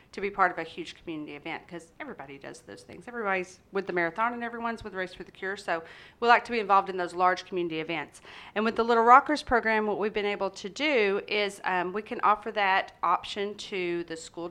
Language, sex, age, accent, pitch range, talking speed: English, female, 40-59, American, 175-210 Hz, 235 wpm